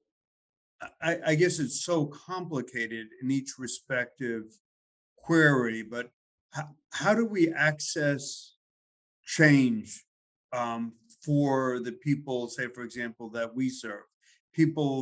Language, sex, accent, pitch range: English, male, American, 115-140 Hz